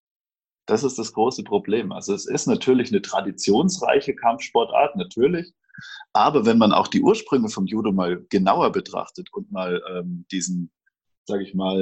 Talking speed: 155 wpm